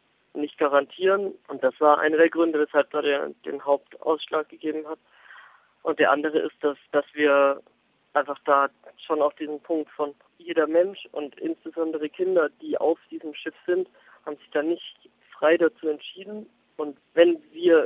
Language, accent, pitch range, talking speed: German, German, 145-175 Hz, 160 wpm